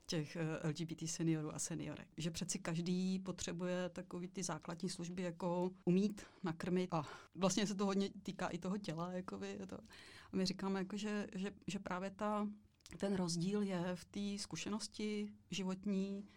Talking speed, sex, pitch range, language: 160 wpm, female, 175-190 Hz, Czech